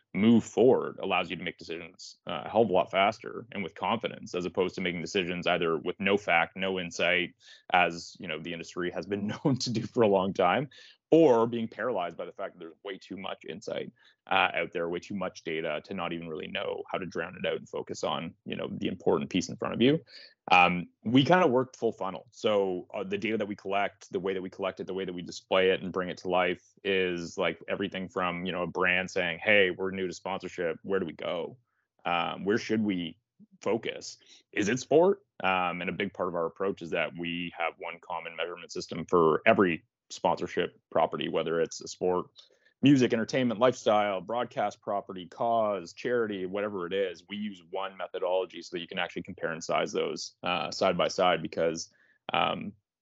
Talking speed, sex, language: 220 wpm, male, English